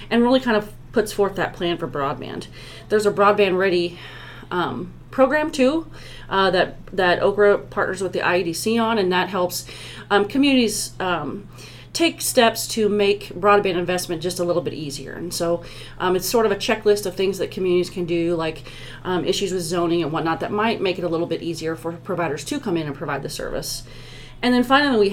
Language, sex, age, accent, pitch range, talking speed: English, female, 30-49, American, 175-215 Hz, 205 wpm